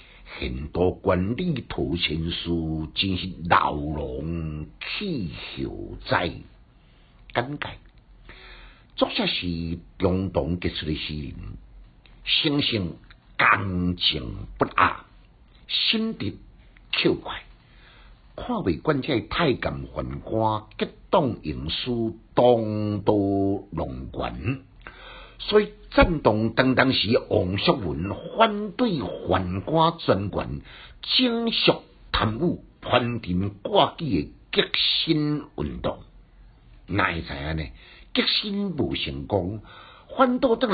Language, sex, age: Chinese, male, 60-79